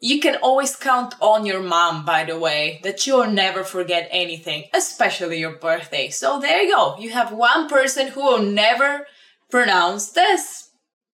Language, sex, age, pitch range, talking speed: English, female, 20-39, 195-285 Hz, 165 wpm